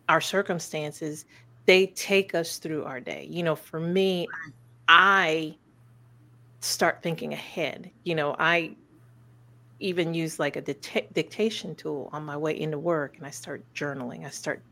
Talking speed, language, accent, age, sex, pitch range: 145 wpm, English, American, 40-59, female, 135-185 Hz